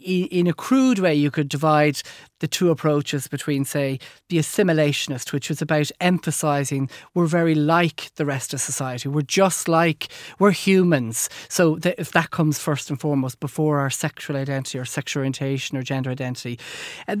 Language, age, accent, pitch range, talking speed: English, 40-59, Irish, 145-175 Hz, 170 wpm